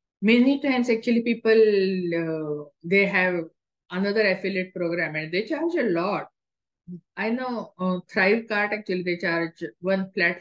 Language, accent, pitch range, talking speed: English, Indian, 165-205 Hz, 140 wpm